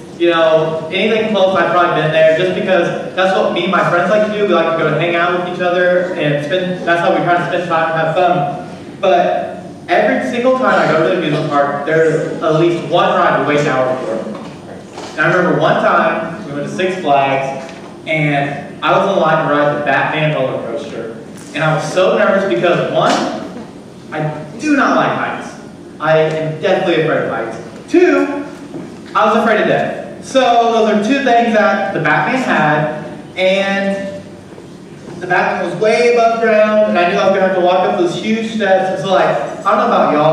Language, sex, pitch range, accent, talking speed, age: English, male, 155-185 Hz, American, 215 wpm, 30-49